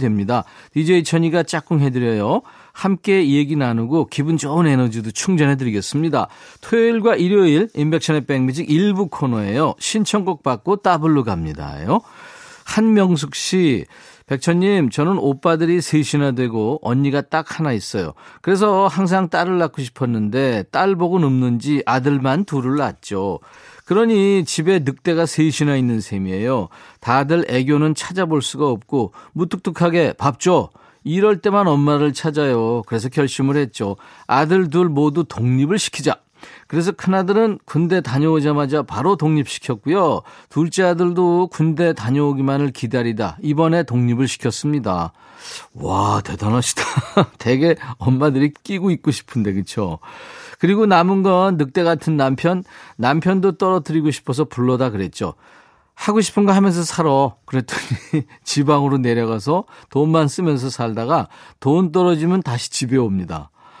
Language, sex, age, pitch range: Korean, male, 40-59, 130-180 Hz